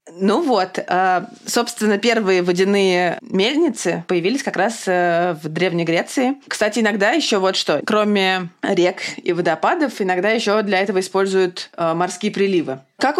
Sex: female